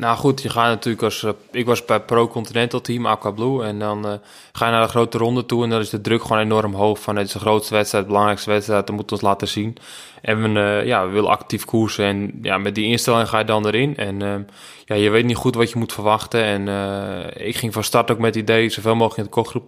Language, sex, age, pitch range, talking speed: Dutch, male, 20-39, 105-115 Hz, 275 wpm